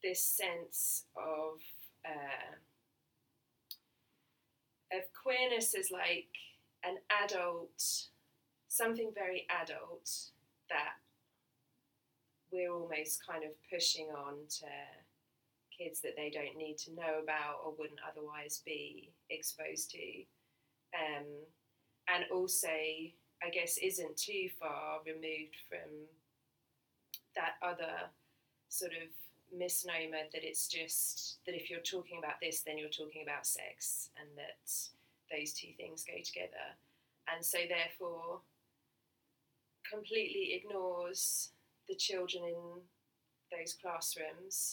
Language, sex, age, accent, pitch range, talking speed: English, female, 20-39, British, 150-180 Hz, 110 wpm